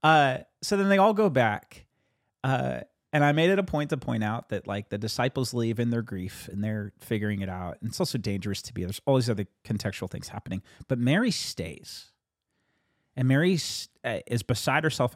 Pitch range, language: 110-175 Hz, English